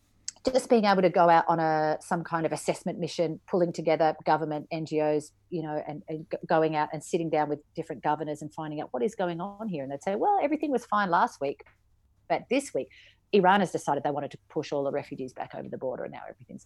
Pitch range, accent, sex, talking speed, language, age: 155-200 Hz, Australian, female, 240 wpm, English, 40-59